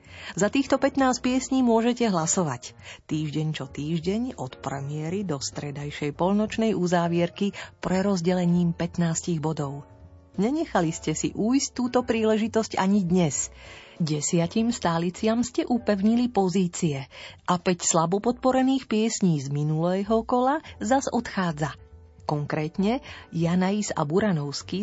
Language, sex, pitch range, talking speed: Slovak, female, 155-215 Hz, 110 wpm